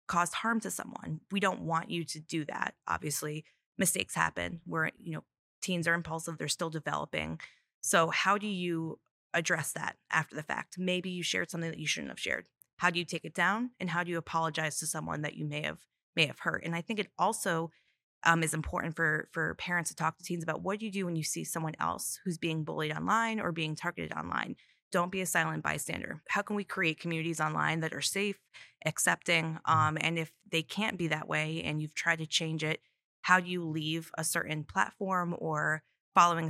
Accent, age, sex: American, 20-39, female